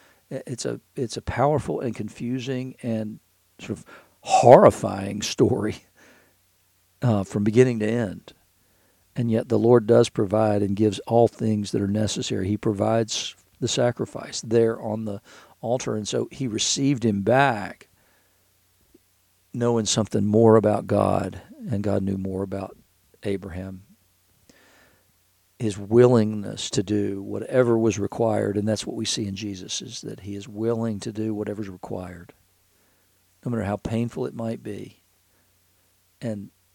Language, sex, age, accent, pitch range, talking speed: English, male, 50-69, American, 100-115 Hz, 140 wpm